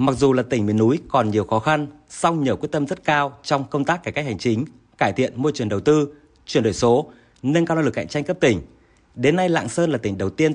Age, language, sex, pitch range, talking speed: 30-49, Vietnamese, male, 125-165 Hz, 275 wpm